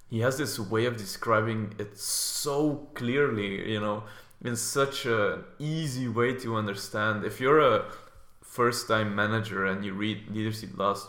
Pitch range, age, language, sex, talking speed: 100-120 Hz, 20-39, English, male, 150 wpm